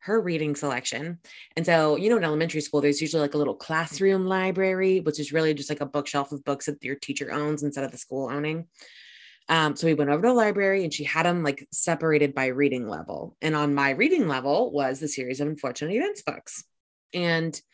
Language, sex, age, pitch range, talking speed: English, female, 20-39, 145-190 Hz, 220 wpm